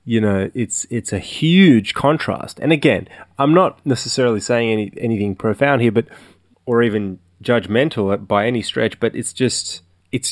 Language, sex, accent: English, male, Australian